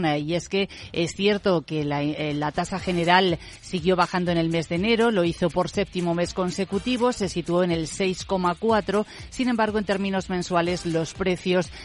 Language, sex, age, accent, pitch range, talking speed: Spanish, female, 40-59, Spanish, 170-205 Hz, 175 wpm